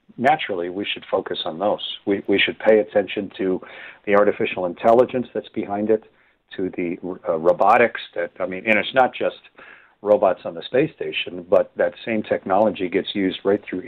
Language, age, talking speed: English, 50-69, 180 wpm